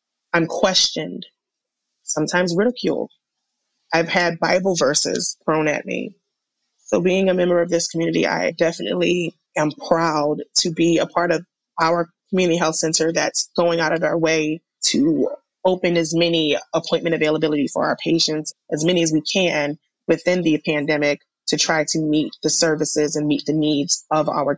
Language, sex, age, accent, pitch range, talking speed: English, female, 20-39, American, 155-180 Hz, 160 wpm